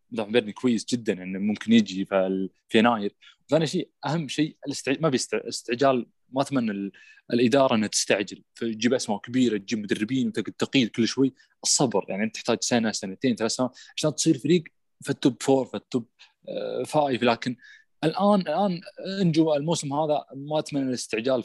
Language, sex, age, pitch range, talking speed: Arabic, male, 20-39, 115-165 Hz, 160 wpm